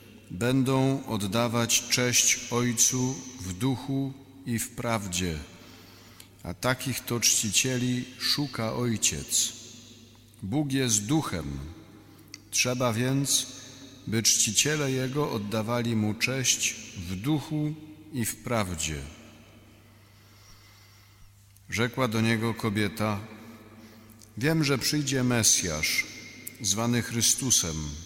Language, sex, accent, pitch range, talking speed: Polish, male, native, 105-125 Hz, 90 wpm